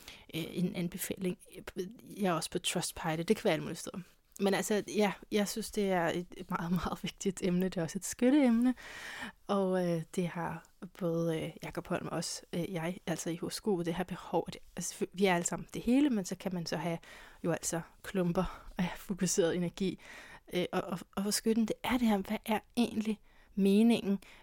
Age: 30-49